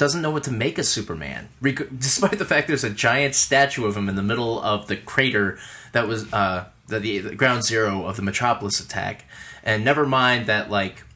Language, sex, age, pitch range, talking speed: English, male, 20-39, 110-150 Hz, 205 wpm